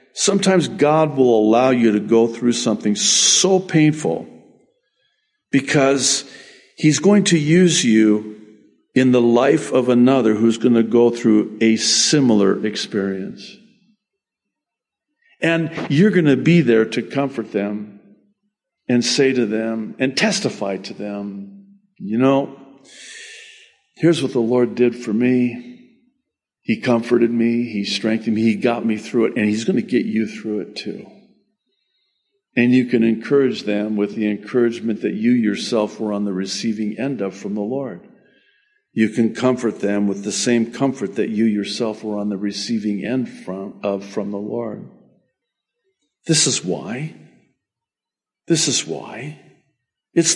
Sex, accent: male, American